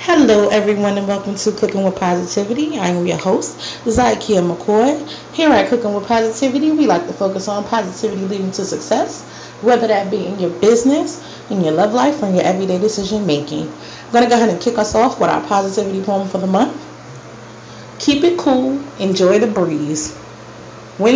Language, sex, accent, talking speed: English, female, American, 190 wpm